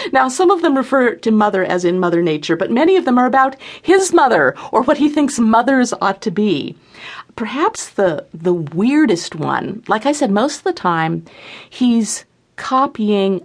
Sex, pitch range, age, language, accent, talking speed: female, 175-265 Hz, 50-69, English, American, 185 wpm